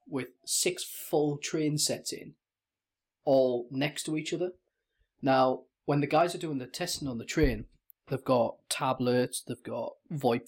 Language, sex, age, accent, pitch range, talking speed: English, male, 20-39, British, 120-150 Hz, 160 wpm